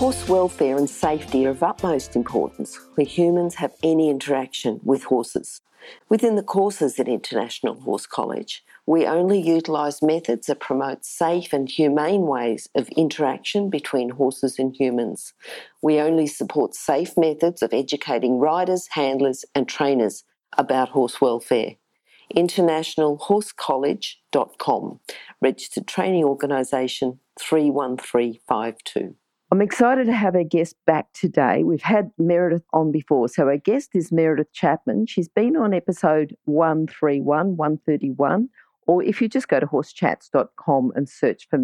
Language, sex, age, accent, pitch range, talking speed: English, female, 50-69, Australian, 145-185 Hz, 135 wpm